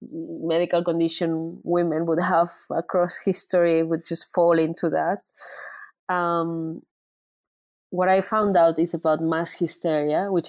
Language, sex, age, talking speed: Dutch, female, 20-39, 125 wpm